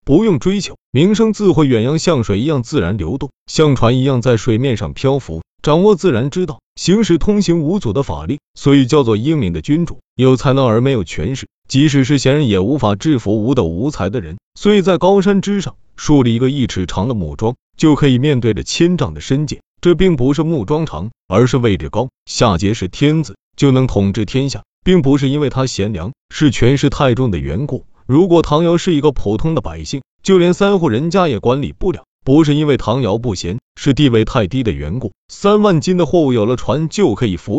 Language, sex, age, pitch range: Chinese, male, 30-49, 115-155 Hz